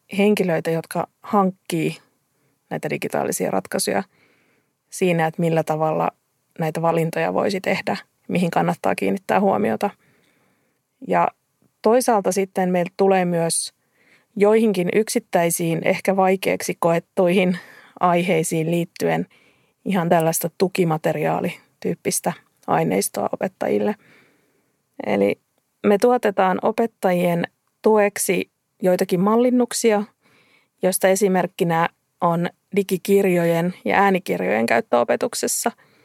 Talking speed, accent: 85 wpm, native